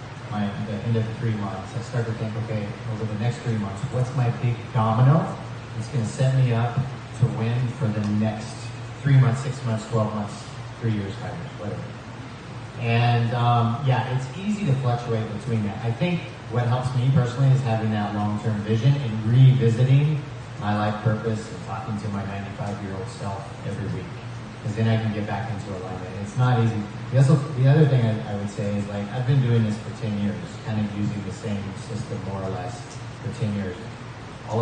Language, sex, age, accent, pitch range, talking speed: English, male, 30-49, American, 105-125 Hz, 210 wpm